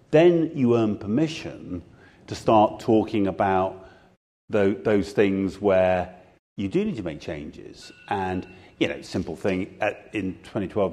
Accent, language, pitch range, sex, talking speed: British, English, 90-110 Hz, male, 135 wpm